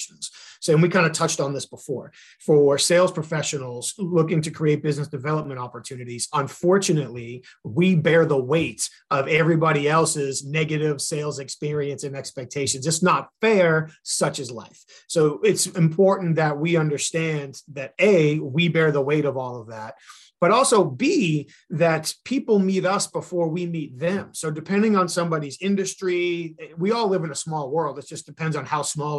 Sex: male